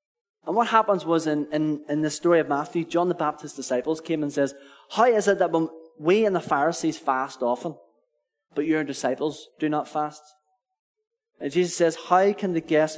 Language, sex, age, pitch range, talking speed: English, male, 20-39, 140-180 Hz, 195 wpm